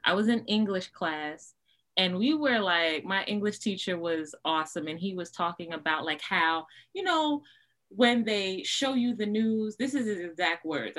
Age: 20-39